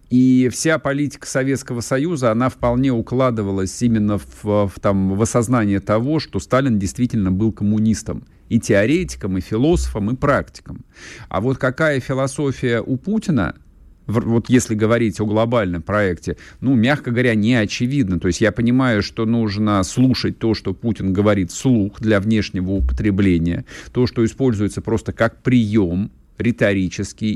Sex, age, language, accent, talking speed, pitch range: male, 50-69, Russian, native, 140 wpm, 100-130 Hz